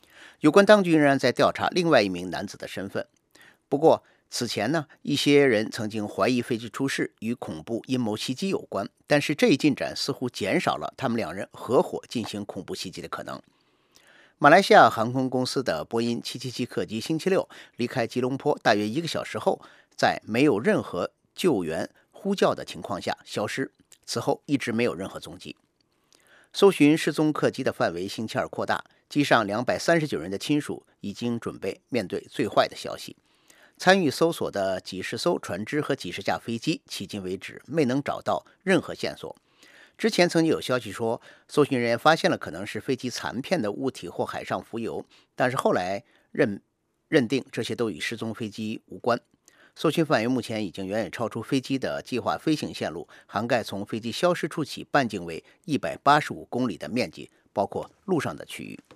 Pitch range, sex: 110-150 Hz, male